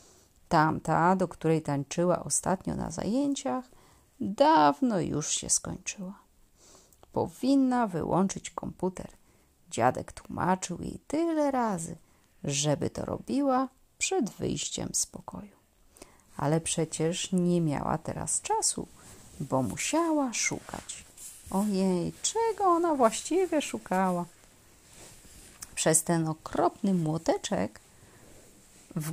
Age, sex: 30-49, female